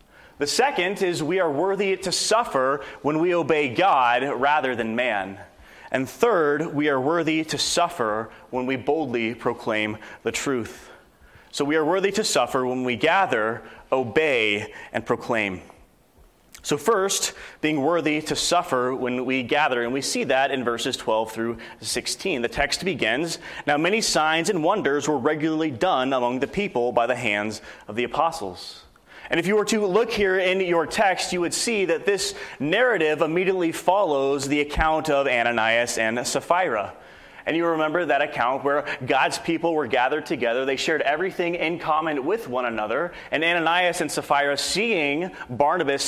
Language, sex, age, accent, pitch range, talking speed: English, male, 30-49, American, 120-165 Hz, 165 wpm